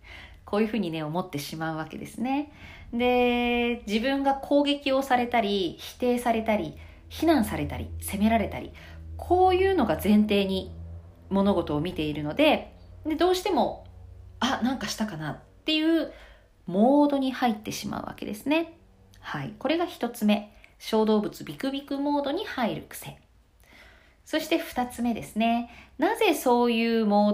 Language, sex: Japanese, female